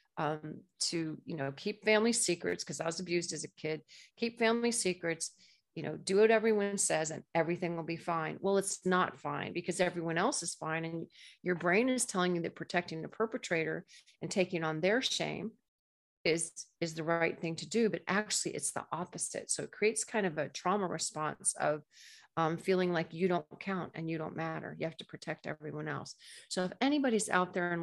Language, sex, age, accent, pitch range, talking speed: English, female, 40-59, American, 160-210 Hz, 210 wpm